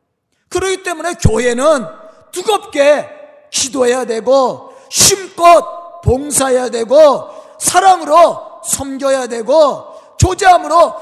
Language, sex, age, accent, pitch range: Korean, male, 40-59, native, 250-335 Hz